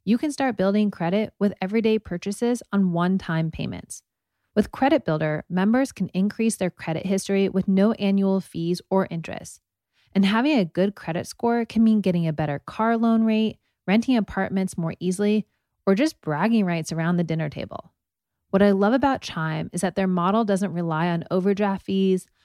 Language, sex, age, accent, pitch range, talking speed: English, female, 20-39, American, 165-215 Hz, 175 wpm